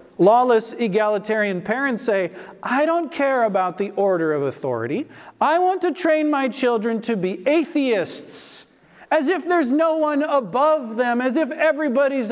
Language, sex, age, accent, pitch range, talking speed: English, male, 40-59, American, 200-275 Hz, 150 wpm